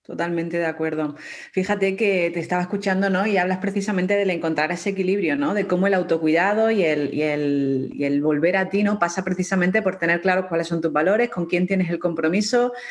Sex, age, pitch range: female, 30-49, 170-205 Hz